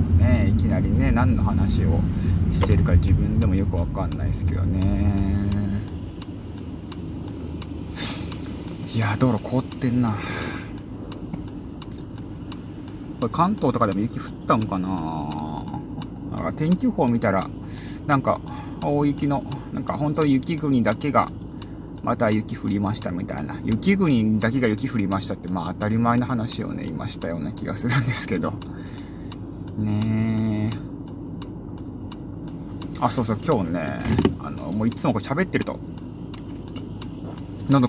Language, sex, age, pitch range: Japanese, male, 20-39, 95-130 Hz